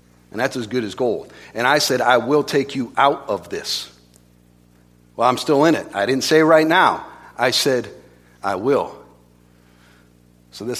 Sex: male